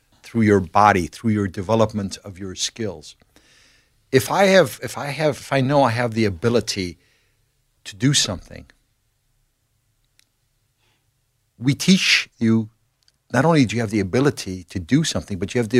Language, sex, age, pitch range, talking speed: English, male, 60-79, 100-125 Hz, 160 wpm